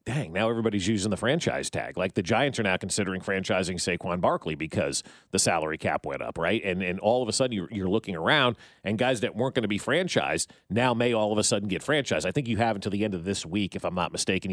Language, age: English, 40-59